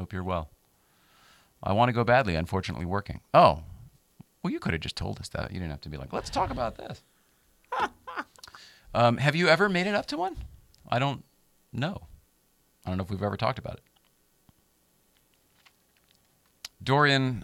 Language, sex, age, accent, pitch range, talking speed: English, male, 40-59, American, 65-100 Hz, 175 wpm